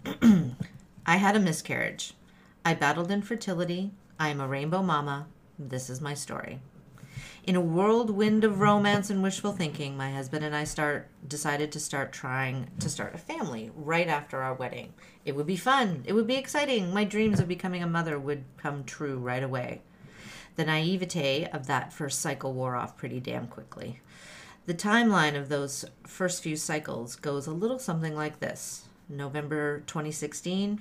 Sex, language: female, English